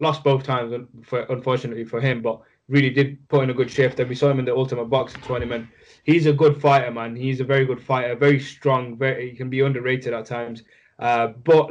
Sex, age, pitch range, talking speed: male, 10-29, 125-145 Hz, 235 wpm